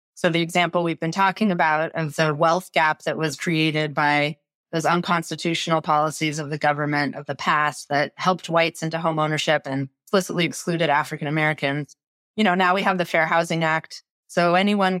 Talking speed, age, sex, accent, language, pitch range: 175 wpm, 30-49, female, American, English, 150-175 Hz